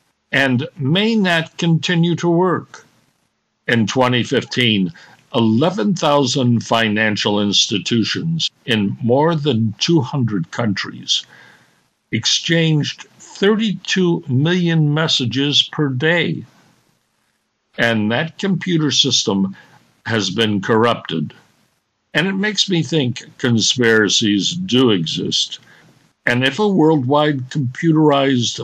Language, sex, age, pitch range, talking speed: English, male, 60-79, 115-160 Hz, 90 wpm